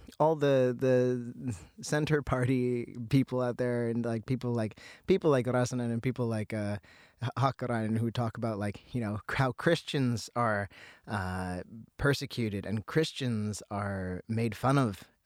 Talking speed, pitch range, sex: 145 wpm, 105-135 Hz, male